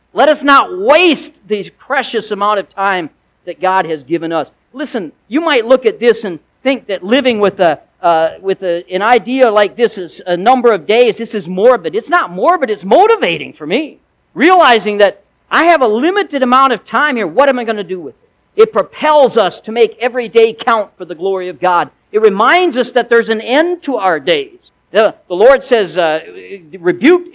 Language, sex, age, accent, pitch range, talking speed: English, male, 50-69, American, 170-265 Hz, 200 wpm